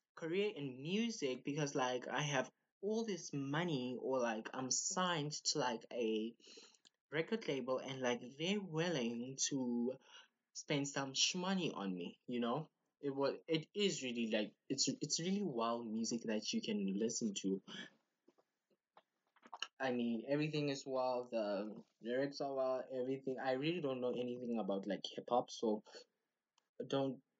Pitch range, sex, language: 120-150 Hz, male, English